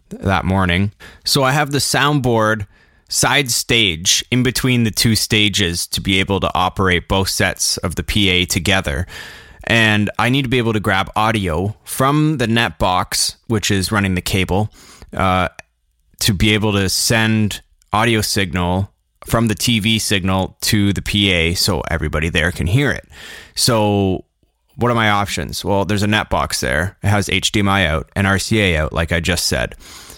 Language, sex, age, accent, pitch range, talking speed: English, male, 20-39, American, 90-110 Hz, 170 wpm